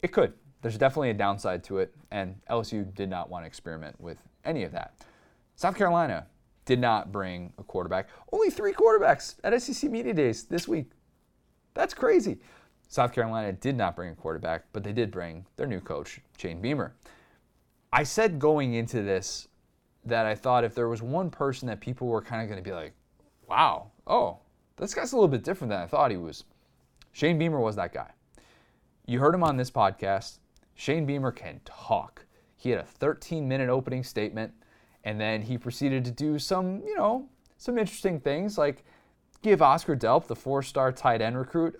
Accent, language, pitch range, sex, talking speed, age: American, English, 105-145 Hz, male, 185 wpm, 30-49